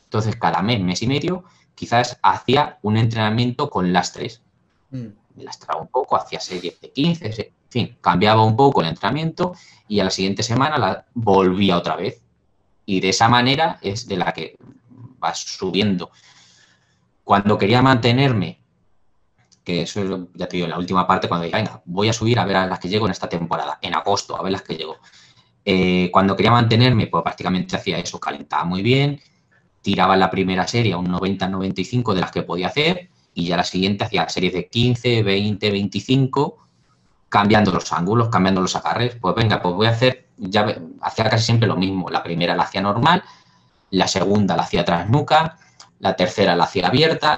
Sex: male